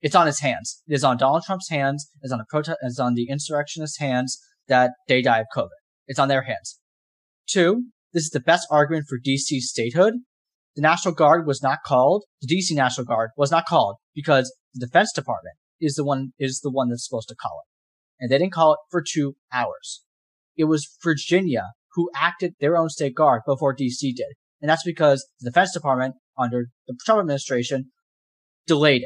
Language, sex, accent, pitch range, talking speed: English, male, American, 125-155 Hz, 190 wpm